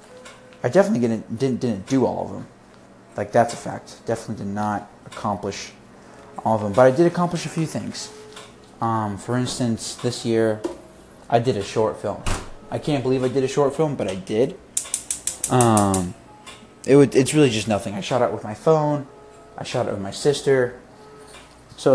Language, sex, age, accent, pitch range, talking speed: English, male, 20-39, American, 105-130 Hz, 185 wpm